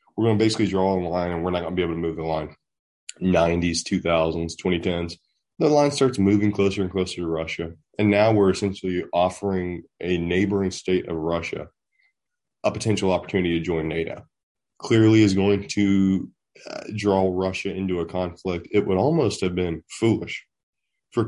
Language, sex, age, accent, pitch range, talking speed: English, male, 20-39, American, 90-105 Hz, 175 wpm